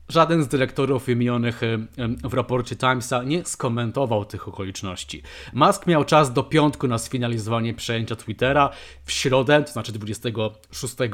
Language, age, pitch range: Polish, 30-49, 115-135 Hz